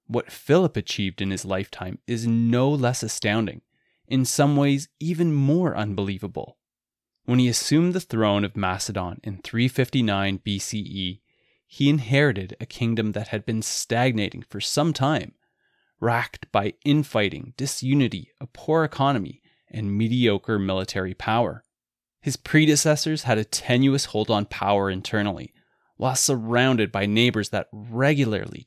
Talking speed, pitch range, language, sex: 130 wpm, 100-135 Hz, English, male